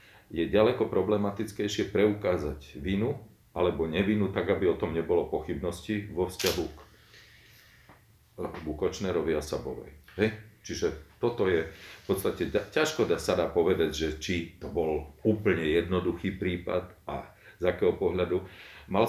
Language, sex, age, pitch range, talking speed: Slovak, male, 40-59, 80-105 Hz, 125 wpm